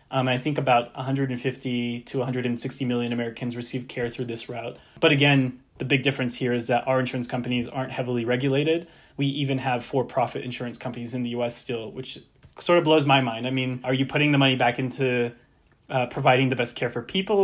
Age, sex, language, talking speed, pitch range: 20-39, male, English, 205 wpm, 120-135 Hz